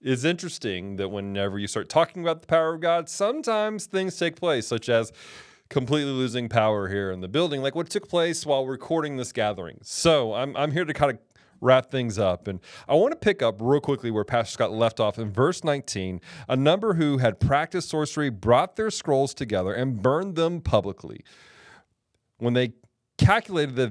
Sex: male